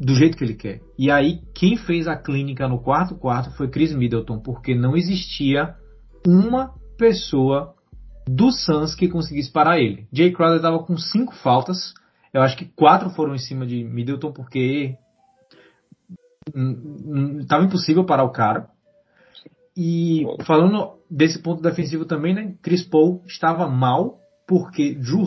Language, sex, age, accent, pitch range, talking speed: Portuguese, male, 20-39, Brazilian, 140-185 Hz, 145 wpm